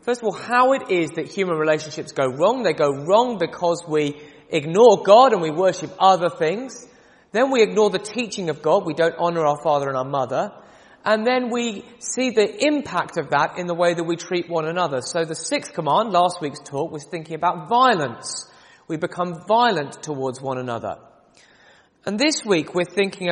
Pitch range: 155-220 Hz